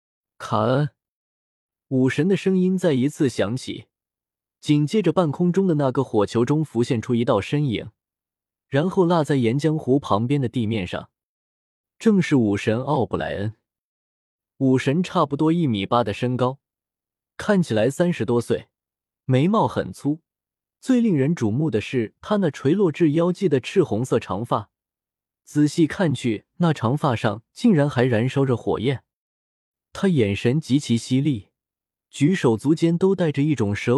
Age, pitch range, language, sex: 20-39, 110-165 Hz, Chinese, male